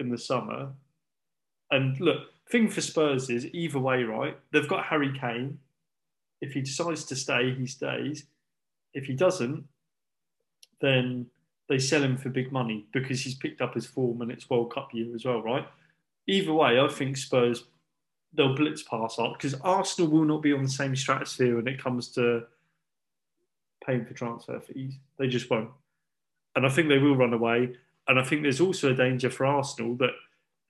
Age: 20-39